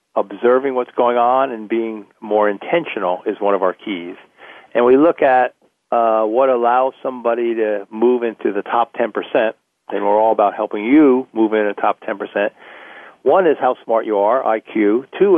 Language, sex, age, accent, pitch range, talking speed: English, male, 50-69, American, 105-125 Hz, 180 wpm